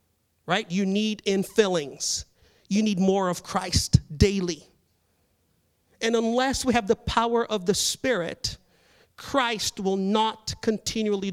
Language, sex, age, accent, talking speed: English, male, 40-59, American, 120 wpm